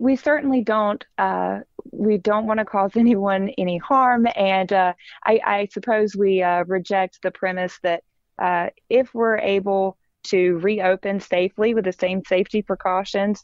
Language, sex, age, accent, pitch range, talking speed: English, female, 20-39, American, 180-205 Hz, 155 wpm